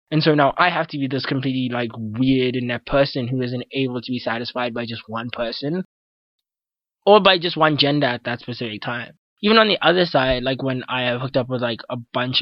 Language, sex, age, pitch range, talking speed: English, male, 20-39, 120-145 Hz, 230 wpm